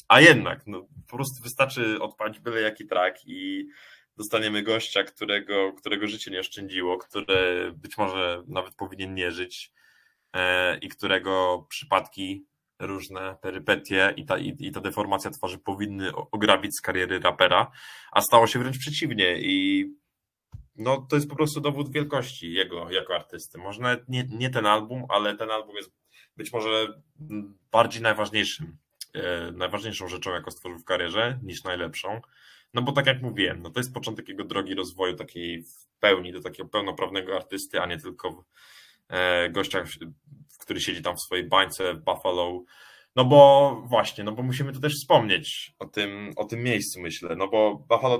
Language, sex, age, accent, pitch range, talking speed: Polish, male, 20-39, native, 95-125 Hz, 160 wpm